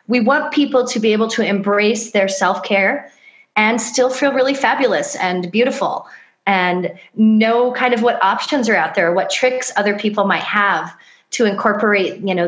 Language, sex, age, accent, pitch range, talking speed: English, female, 30-49, American, 195-250 Hz, 175 wpm